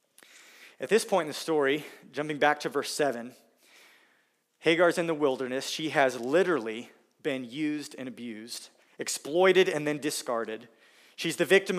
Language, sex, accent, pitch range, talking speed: English, male, American, 135-175 Hz, 150 wpm